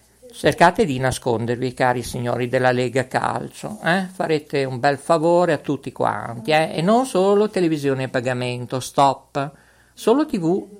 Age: 50-69